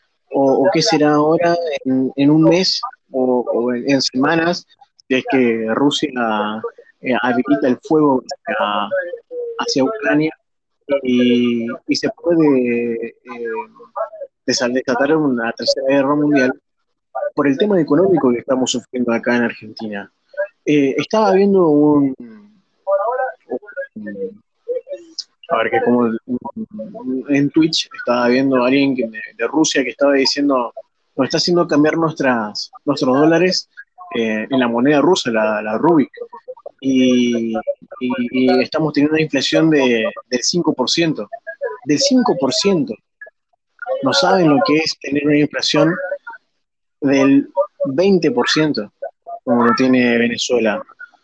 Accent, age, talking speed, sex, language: Argentinian, 20-39, 125 wpm, male, Spanish